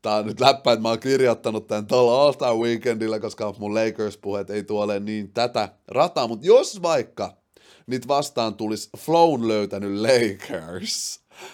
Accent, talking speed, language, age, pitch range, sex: native, 130 wpm, Finnish, 30-49, 100-125 Hz, male